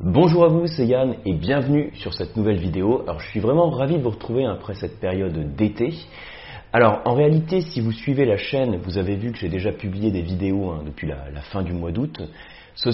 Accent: French